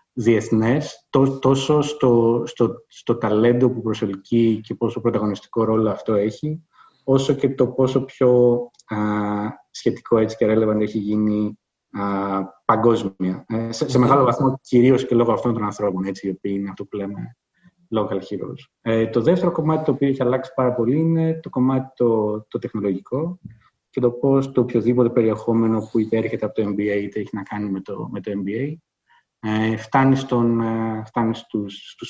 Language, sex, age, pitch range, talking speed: Greek, male, 20-39, 100-125 Hz, 160 wpm